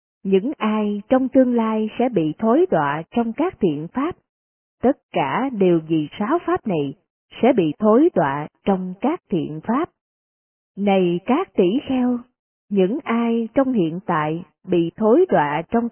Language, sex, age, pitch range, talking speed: Vietnamese, female, 20-39, 175-255 Hz, 155 wpm